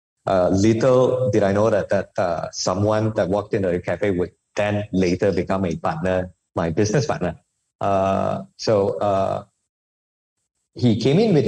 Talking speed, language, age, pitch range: 155 wpm, English, 20-39, 95-115 Hz